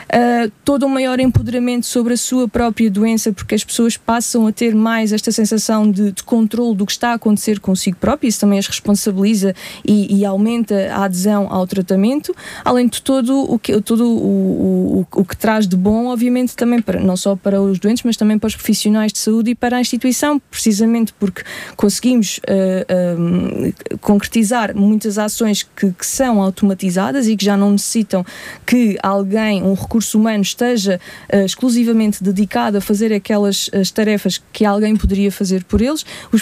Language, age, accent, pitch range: Portuguese, 20-39, Brazilian, 205-245 Hz